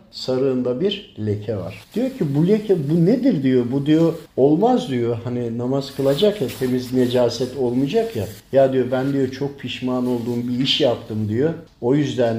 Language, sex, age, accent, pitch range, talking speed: Turkish, male, 50-69, native, 115-155 Hz, 175 wpm